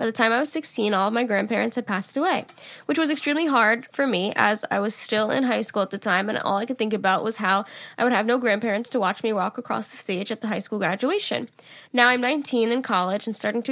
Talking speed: 270 wpm